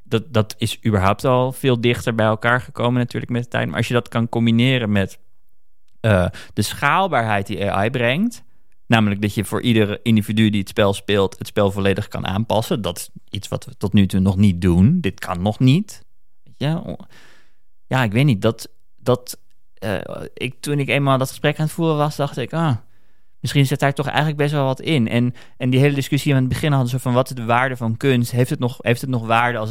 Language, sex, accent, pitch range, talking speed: Dutch, male, Dutch, 105-125 Hz, 215 wpm